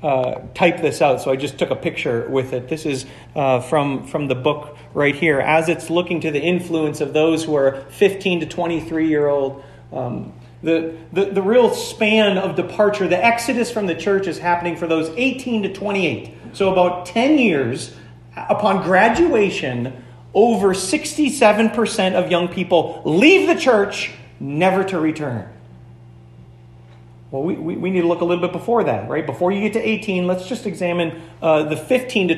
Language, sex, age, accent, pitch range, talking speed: English, male, 40-59, American, 120-190 Hz, 180 wpm